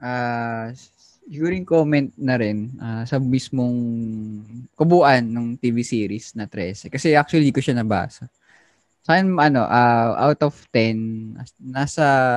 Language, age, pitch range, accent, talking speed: Filipino, 20-39, 110-140 Hz, native, 135 wpm